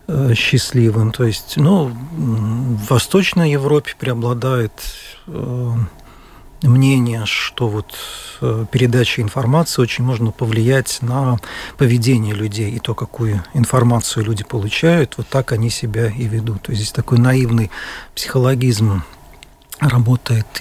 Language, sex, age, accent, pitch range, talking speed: Russian, male, 40-59, native, 115-140 Hz, 110 wpm